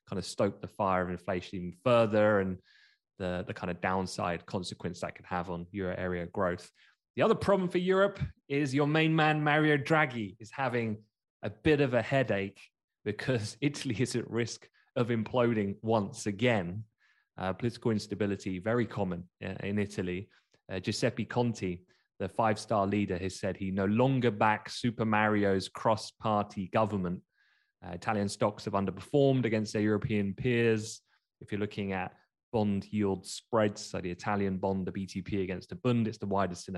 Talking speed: 165 wpm